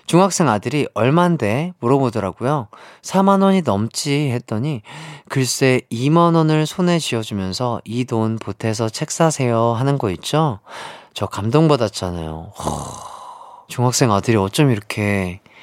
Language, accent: Korean, native